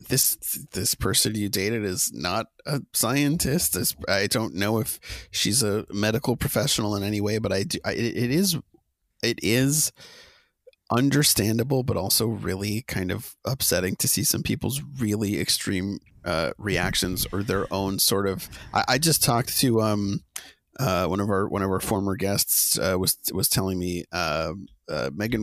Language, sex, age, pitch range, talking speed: English, male, 30-49, 95-125 Hz, 170 wpm